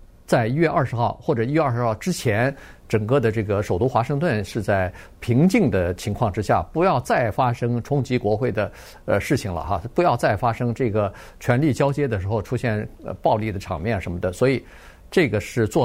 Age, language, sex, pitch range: 50-69, Chinese, male, 110-150 Hz